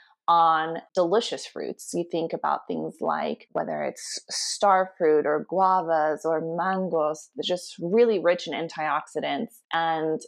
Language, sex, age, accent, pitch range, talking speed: English, female, 20-39, American, 165-210 Hz, 135 wpm